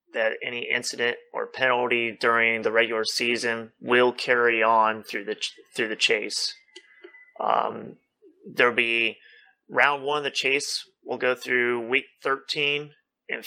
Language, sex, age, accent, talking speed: English, male, 30-49, American, 145 wpm